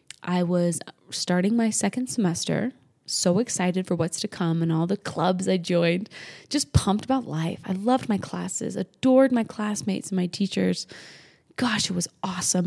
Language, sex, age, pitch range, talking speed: English, female, 20-39, 175-210 Hz, 170 wpm